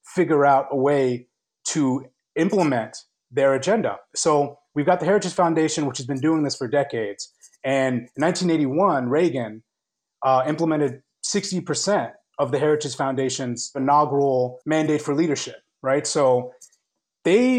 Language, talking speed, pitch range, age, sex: English, 135 wpm, 135-175 Hz, 30-49, male